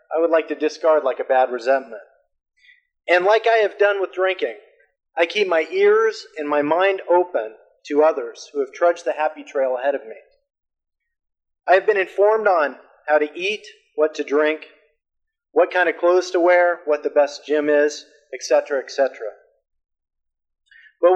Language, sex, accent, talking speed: English, male, American, 170 wpm